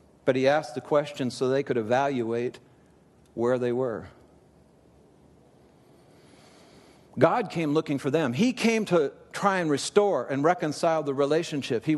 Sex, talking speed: male, 140 wpm